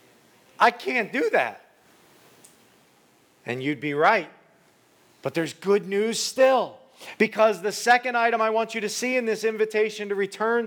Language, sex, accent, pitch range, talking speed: English, male, American, 140-210 Hz, 150 wpm